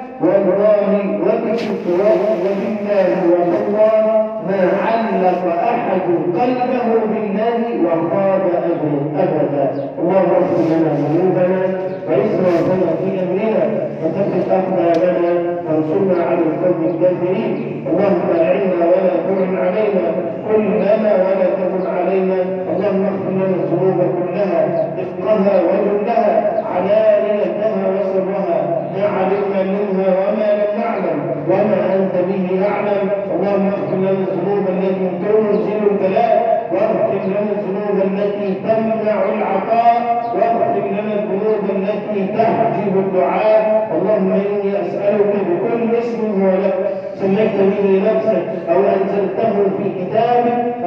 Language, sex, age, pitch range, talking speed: Arabic, male, 50-69, 185-215 Hz, 105 wpm